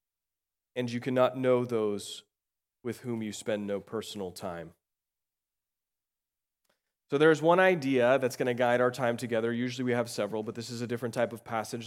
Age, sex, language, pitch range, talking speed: 30-49, male, English, 110-140 Hz, 175 wpm